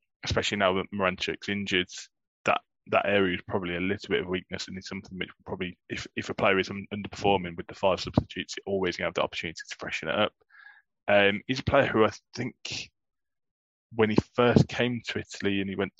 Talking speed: 220 wpm